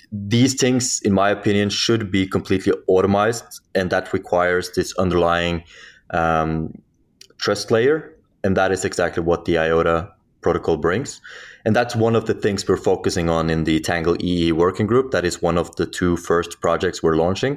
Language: English